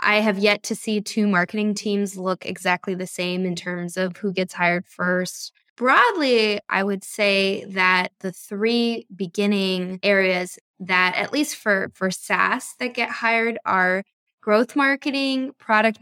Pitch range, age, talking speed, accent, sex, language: 185-215 Hz, 10-29, 155 wpm, American, female, English